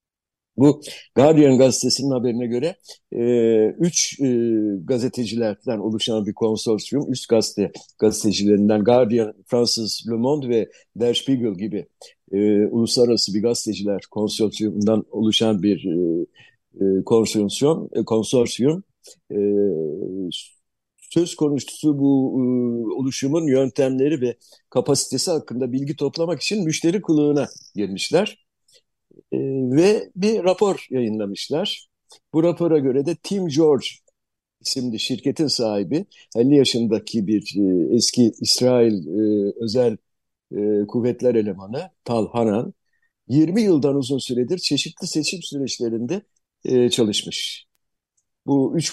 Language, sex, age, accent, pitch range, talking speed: Turkish, male, 60-79, native, 110-140 Hz, 110 wpm